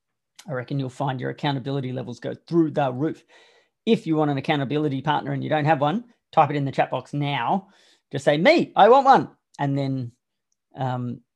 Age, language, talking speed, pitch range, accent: 30-49, English, 200 wpm, 135-180 Hz, Australian